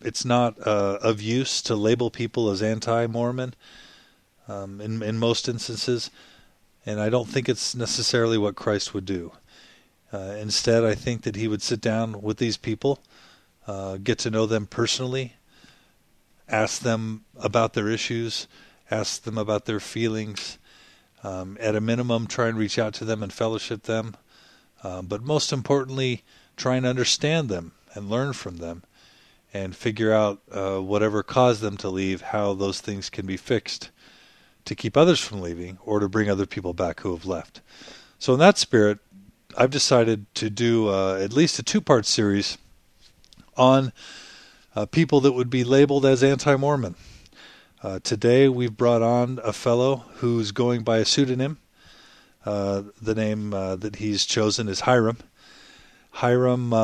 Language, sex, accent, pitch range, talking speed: English, male, American, 100-120 Hz, 160 wpm